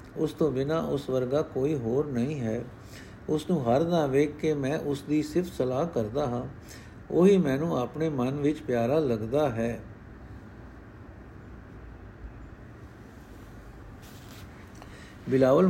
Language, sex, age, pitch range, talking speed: Punjabi, male, 60-79, 125-160 Hz, 105 wpm